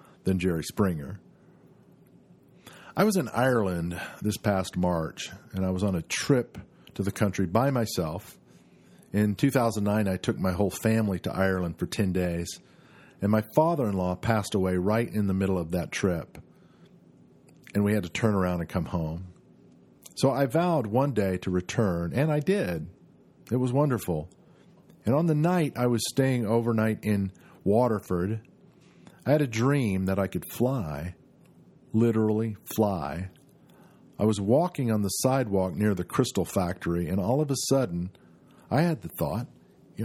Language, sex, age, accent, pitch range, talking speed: English, male, 50-69, American, 95-130 Hz, 165 wpm